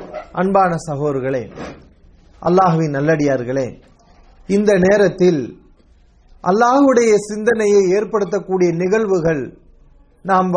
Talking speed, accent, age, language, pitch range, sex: 60 wpm, Indian, 30-49, English, 180-235 Hz, male